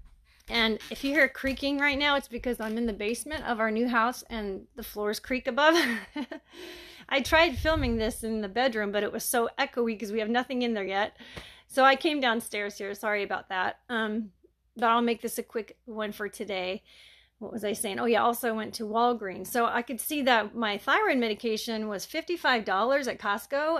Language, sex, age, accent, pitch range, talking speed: English, female, 30-49, American, 215-255 Hz, 205 wpm